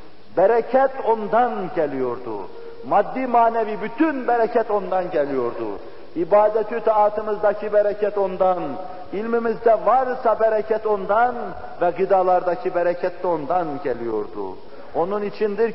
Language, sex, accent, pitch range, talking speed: Turkish, male, native, 200-235 Hz, 95 wpm